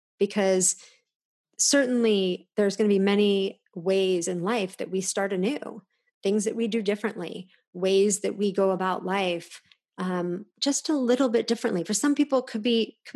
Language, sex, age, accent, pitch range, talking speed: English, female, 30-49, American, 185-215 Hz, 175 wpm